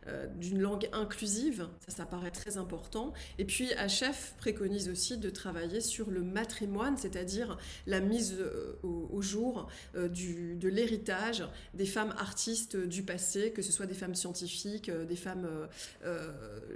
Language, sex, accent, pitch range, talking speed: French, female, French, 185-225 Hz, 145 wpm